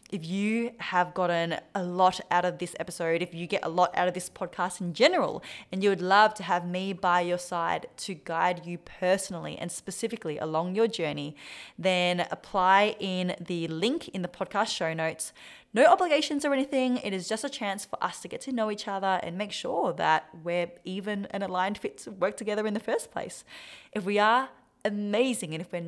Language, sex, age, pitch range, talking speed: English, female, 20-39, 175-220 Hz, 210 wpm